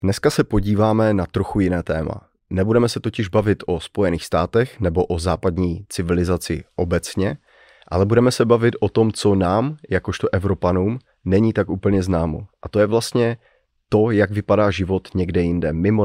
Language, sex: Czech, male